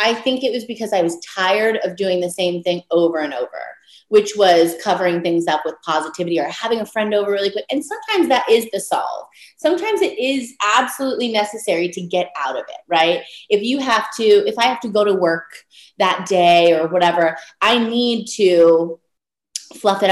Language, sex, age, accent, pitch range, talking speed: English, female, 30-49, American, 175-230 Hz, 200 wpm